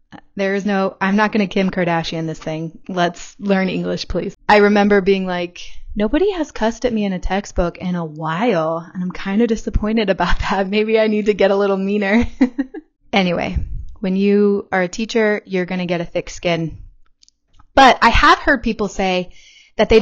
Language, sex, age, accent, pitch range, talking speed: English, female, 20-39, American, 175-225 Hz, 200 wpm